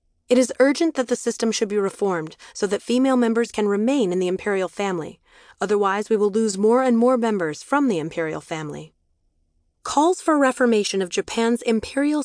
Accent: American